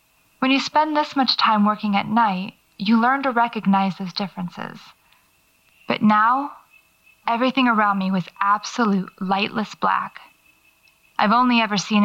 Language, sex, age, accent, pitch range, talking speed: English, female, 20-39, American, 195-220 Hz, 140 wpm